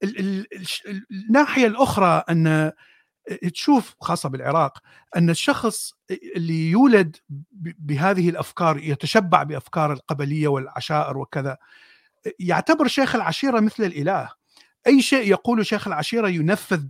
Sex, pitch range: male, 155-220 Hz